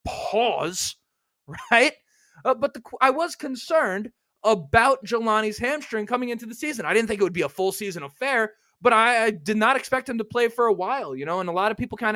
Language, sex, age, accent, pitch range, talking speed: English, male, 20-39, American, 190-245 Hz, 215 wpm